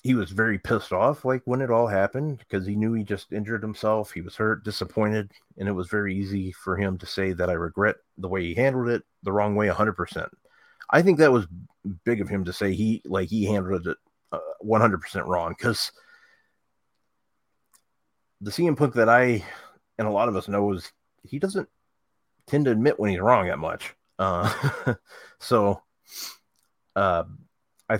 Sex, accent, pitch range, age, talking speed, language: male, American, 100-125 Hz, 30-49, 190 wpm, English